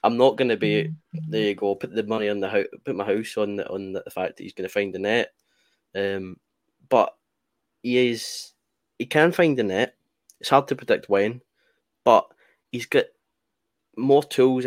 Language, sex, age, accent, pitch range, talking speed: English, male, 10-29, British, 105-130 Hz, 190 wpm